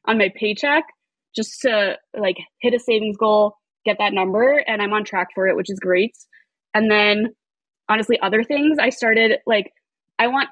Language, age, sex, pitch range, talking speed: English, 20-39, female, 205-260 Hz, 185 wpm